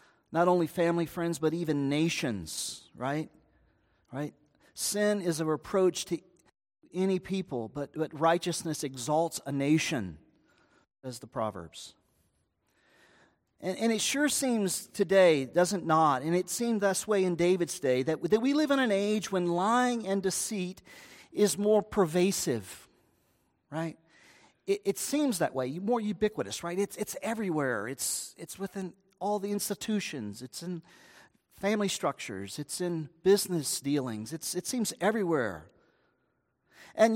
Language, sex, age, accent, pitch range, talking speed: English, male, 40-59, American, 155-210 Hz, 140 wpm